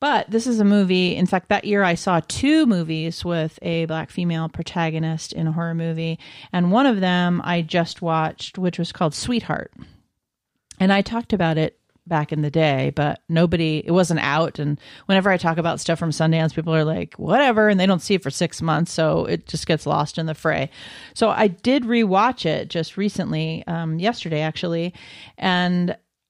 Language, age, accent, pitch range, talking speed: English, 40-59, American, 160-190 Hz, 195 wpm